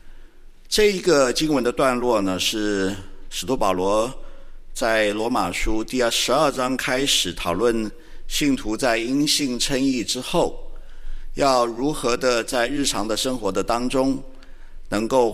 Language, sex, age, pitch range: Chinese, male, 50-69, 105-145 Hz